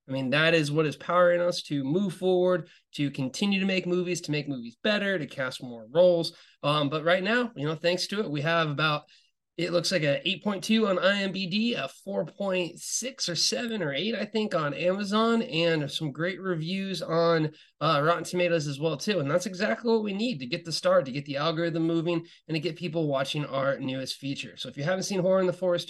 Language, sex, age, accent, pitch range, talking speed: English, male, 20-39, American, 150-195 Hz, 220 wpm